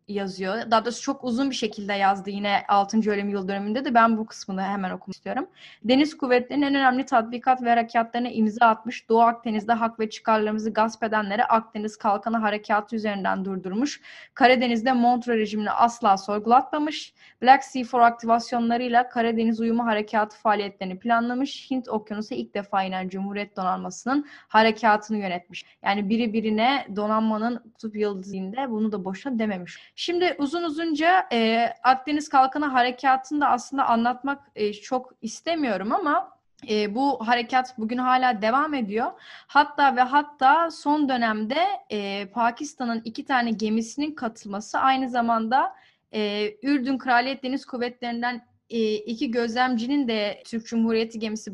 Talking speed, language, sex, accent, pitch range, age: 140 wpm, Turkish, female, native, 215-270 Hz, 10-29